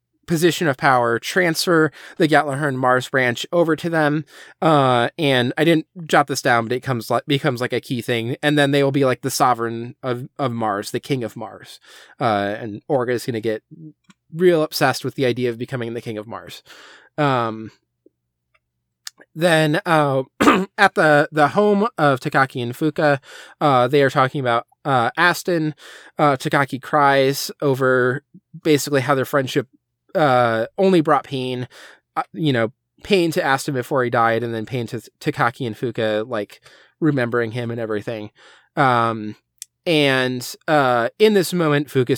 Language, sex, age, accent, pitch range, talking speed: English, male, 20-39, American, 120-155 Hz, 170 wpm